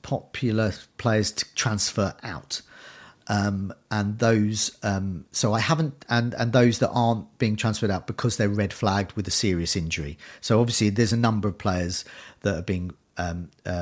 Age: 40-59